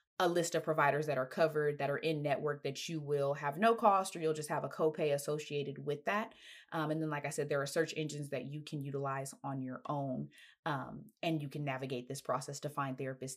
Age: 20-39